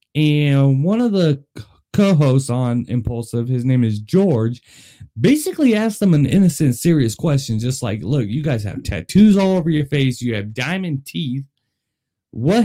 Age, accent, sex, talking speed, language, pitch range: 20-39, American, male, 160 wpm, English, 115-180 Hz